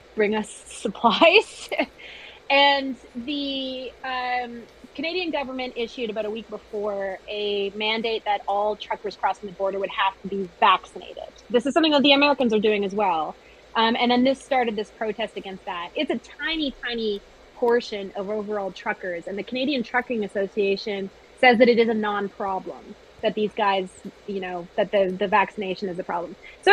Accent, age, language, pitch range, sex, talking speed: American, 30-49, English, 205-265 Hz, female, 175 wpm